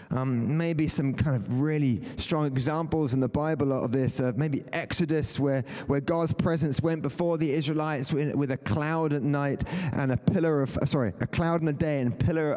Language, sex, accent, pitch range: English, male, British, 125-155 Hz